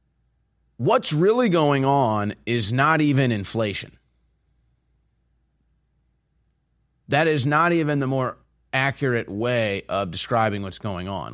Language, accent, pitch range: English, American, 95-135 Hz